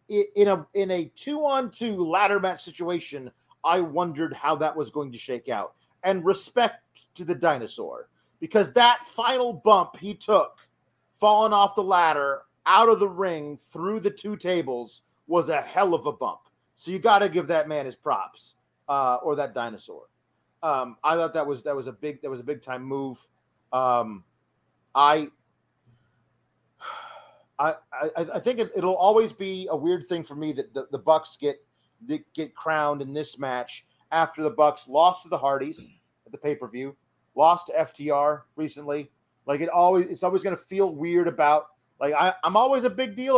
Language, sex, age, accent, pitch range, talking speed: English, male, 40-59, American, 145-200 Hz, 185 wpm